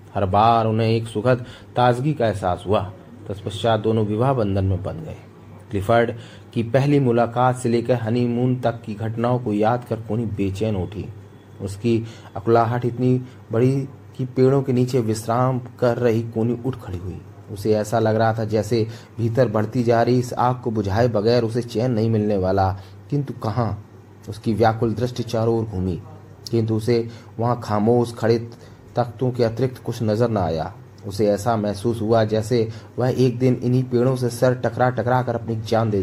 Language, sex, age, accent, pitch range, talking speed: Hindi, male, 30-49, native, 105-120 Hz, 140 wpm